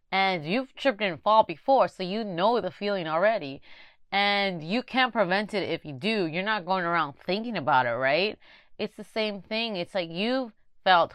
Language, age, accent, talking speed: English, 30-49, American, 195 wpm